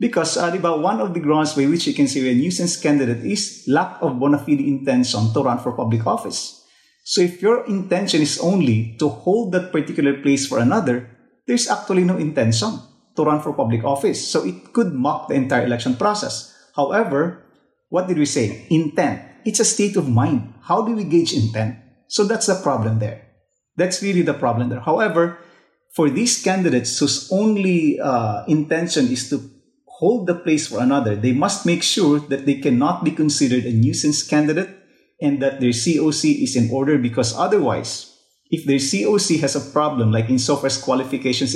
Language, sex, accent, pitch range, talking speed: English, male, Filipino, 130-175 Hz, 185 wpm